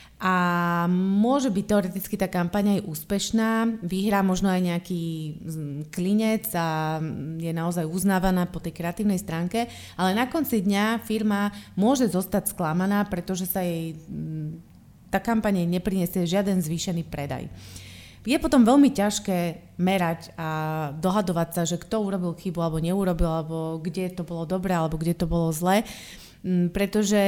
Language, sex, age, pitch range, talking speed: Slovak, female, 30-49, 165-200 Hz, 140 wpm